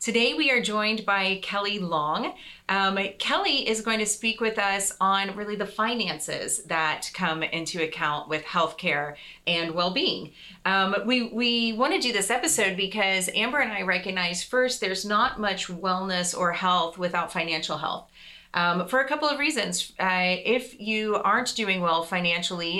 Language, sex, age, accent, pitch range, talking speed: English, female, 30-49, American, 180-220 Hz, 170 wpm